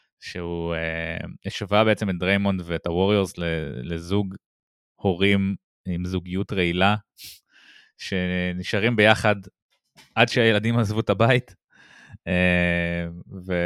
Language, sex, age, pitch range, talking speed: Hebrew, male, 20-39, 85-105 Hz, 100 wpm